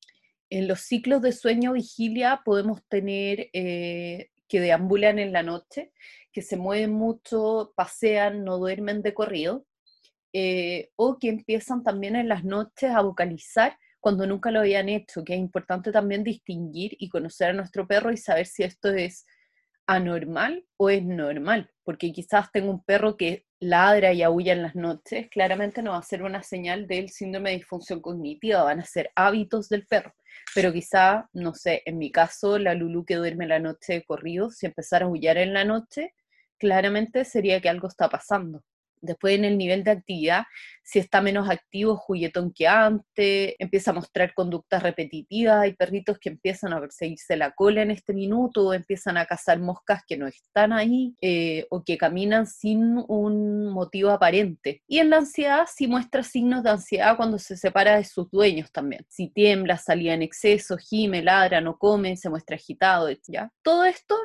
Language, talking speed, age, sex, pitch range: Spanish, 180 wpm, 30-49, female, 180-220 Hz